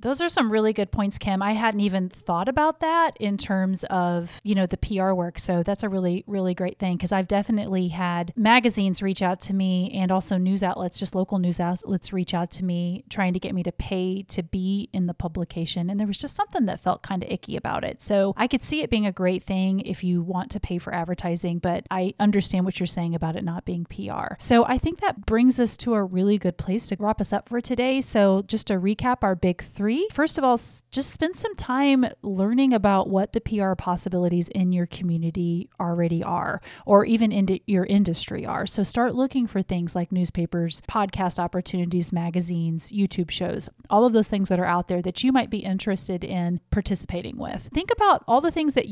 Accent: American